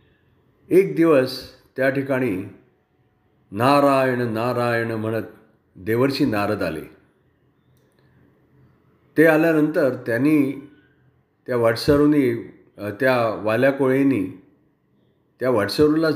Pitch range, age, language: 115-145 Hz, 50-69, Marathi